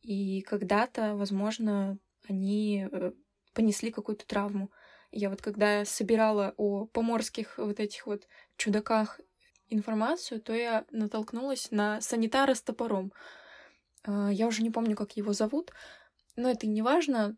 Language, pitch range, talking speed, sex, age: Russian, 205-230 Hz, 125 wpm, female, 20-39